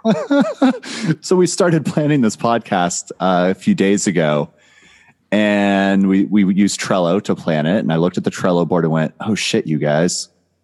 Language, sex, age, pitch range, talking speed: English, male, 30-49, 90-130 Hz, 185 wpm